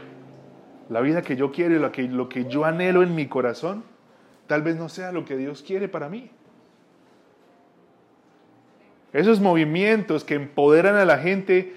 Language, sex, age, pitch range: Spanish, male, 30-49, 160-215 Hz